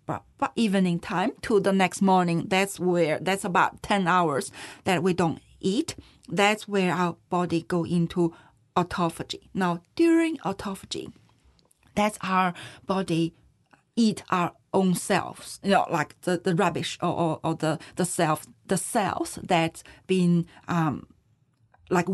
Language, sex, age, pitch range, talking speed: English, female, 40-59, 170-200 Hz, 140 wpm